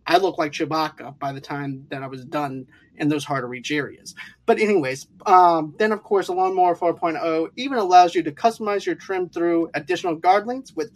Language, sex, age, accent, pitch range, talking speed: English, male, 30-49, American, 150-190 Hz, 210 wpm